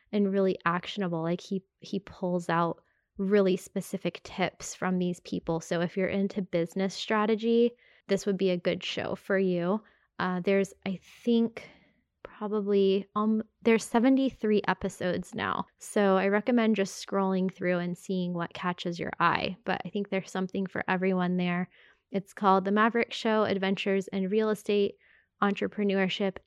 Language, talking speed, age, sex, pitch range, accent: English, 155 wpm, 20-39, female, 185-215 Hz, American